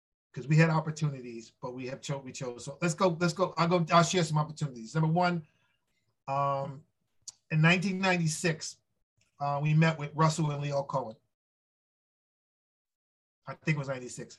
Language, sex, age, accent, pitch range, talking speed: English, male, 40-59, American, 140-175 Hz, 165 wpm